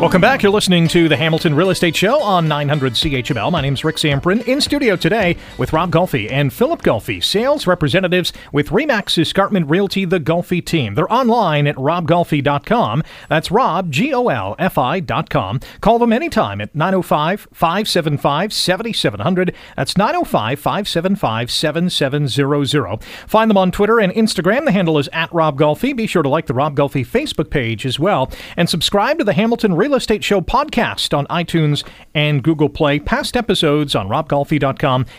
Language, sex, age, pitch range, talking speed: English, male, 40-59, 145-205 Hz, 165 wpm